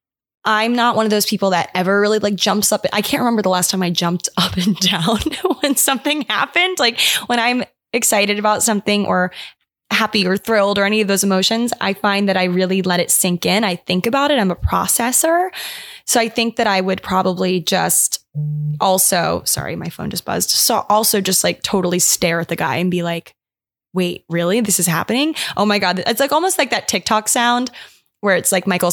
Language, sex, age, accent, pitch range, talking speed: English, female, 20-39, American, 180-235 Hz, 210 wpm